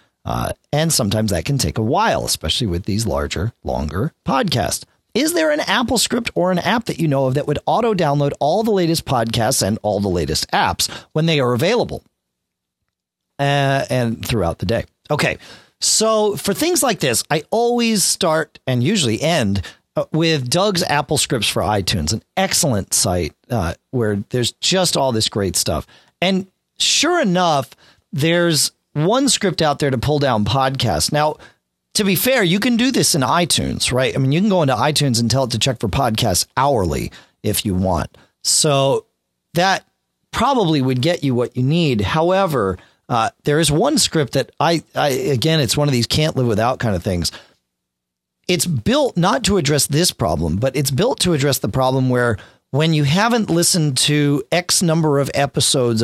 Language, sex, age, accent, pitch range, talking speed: English, male, 40-59, American, 115-170 Hz, 185 wpm